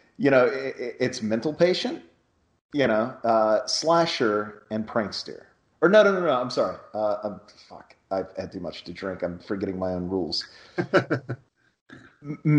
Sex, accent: male, American